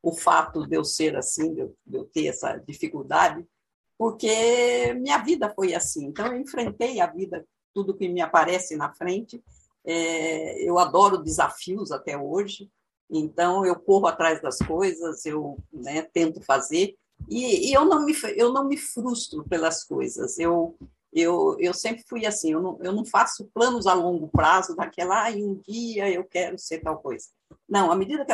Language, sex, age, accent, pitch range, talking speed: Portuguese, female, 50-69, Brazilian, 165-245 Hz, 175 wpm